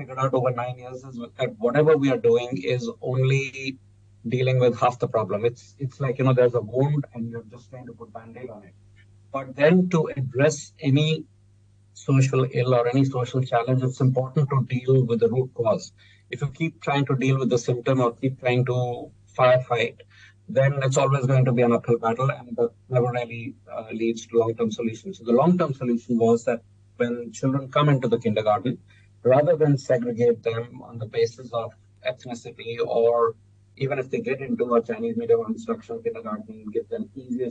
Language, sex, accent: English, male, Indian